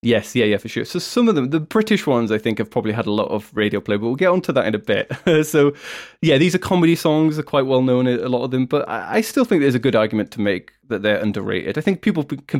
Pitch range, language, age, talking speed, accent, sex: 105-140 Hz, English, 20-39, 295 wpm, British, male